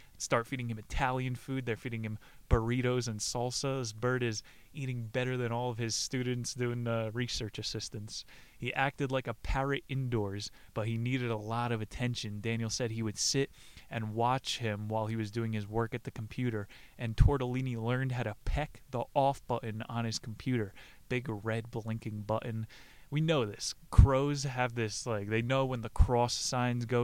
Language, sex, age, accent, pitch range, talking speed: English, male, 20-39, American, 115-135 Hz, 185 wpm